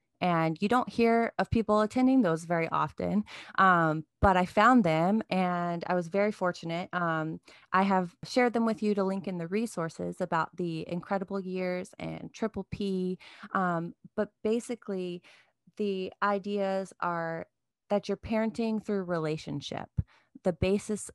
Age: 30-49